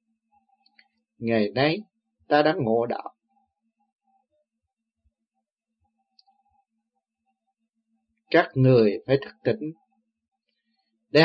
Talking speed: 65 wpm